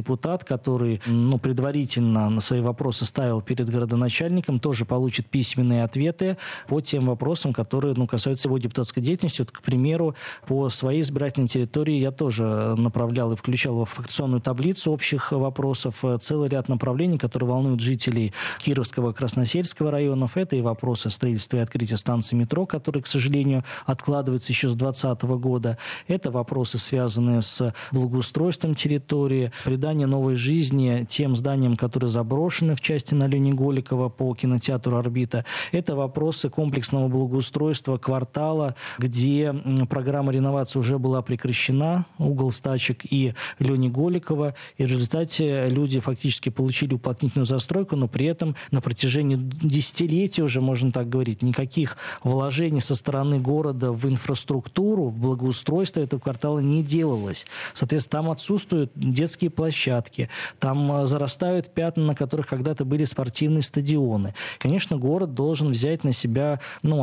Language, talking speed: Russian, 135 wpm